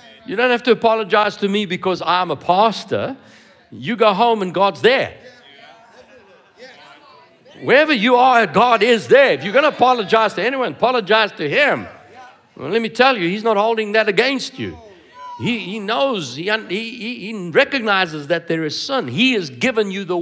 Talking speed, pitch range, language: 175 wpm, 155-230 Hz, English